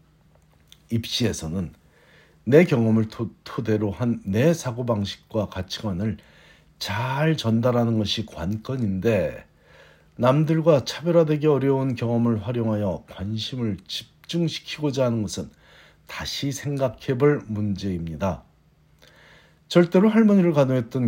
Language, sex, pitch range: Korean, male, 105-145 Hz